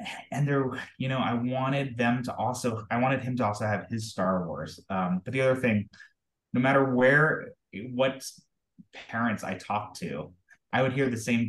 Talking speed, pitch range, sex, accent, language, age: 190 wpm, 100-125 Hz, male, American, English, 20-39